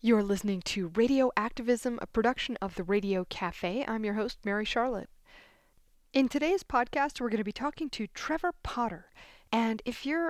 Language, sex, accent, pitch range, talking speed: English, female, American, 195-245 Hz, 175 wpm